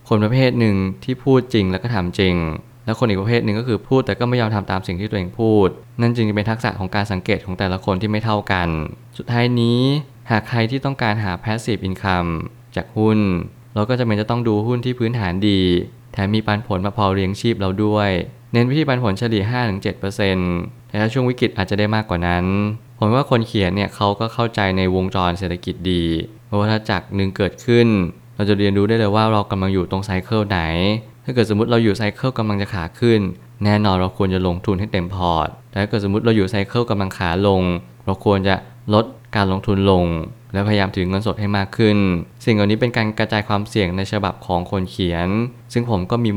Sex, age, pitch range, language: male, 20-39, 95-115 Hz, Thai